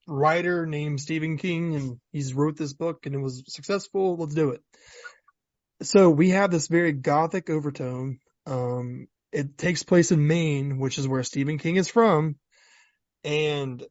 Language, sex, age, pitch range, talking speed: English, male, 20-39, 135-165 Hz, 160 wpm